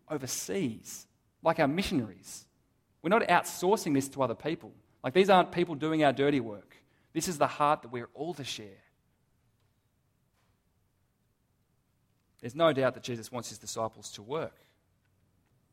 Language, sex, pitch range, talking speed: English, male, 110-140 Hz, 145 wpm